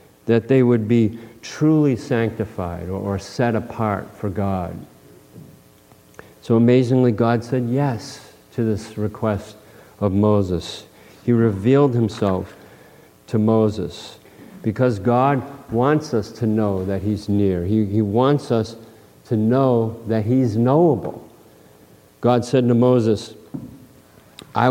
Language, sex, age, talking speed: English, male, 50-69, 120 wpm